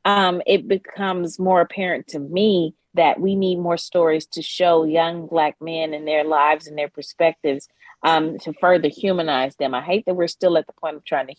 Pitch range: 165-195 Hz